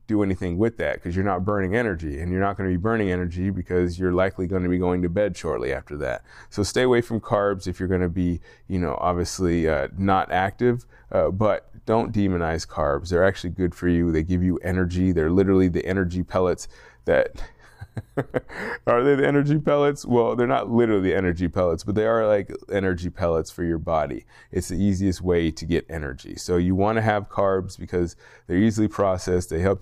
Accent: American